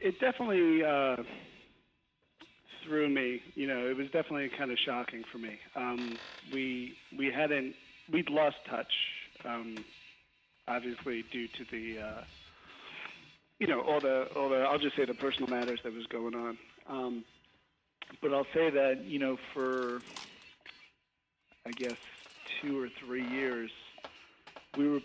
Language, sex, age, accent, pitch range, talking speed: English, male, 40-59, American, 115-140 Hz, 145 wpm